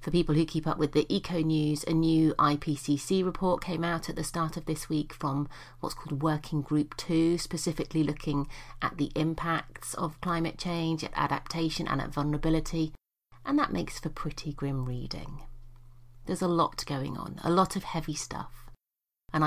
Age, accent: 30-49, British